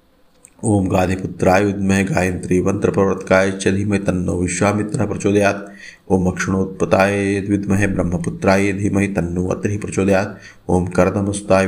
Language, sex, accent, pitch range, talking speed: Hindi, male, native, 90-100 Hz, 100 wpm